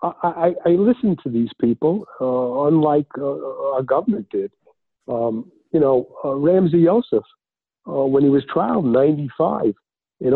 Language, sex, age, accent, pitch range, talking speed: English, male, 50-69, American, 125-170 Hz, 160 wpm